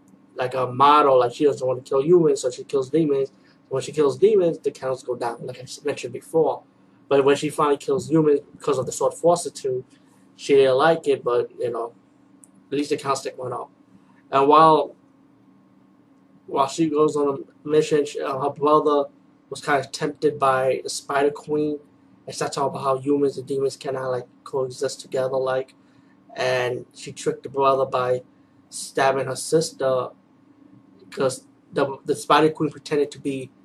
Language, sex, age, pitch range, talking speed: English, male, 20-39, 130-155 Hz, 180 wpm